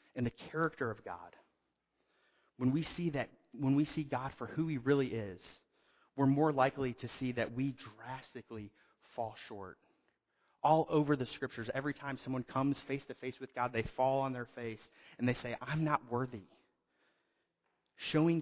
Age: 30-49